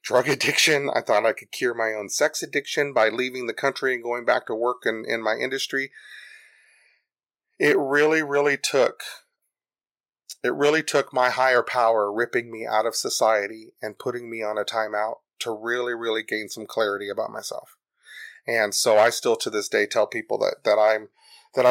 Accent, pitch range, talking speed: American, 110-135 Hz, 185 wpm